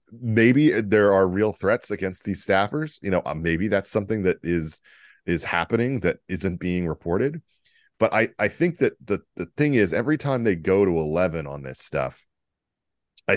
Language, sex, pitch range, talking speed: English, male, 80-105 Hz, 180 wpm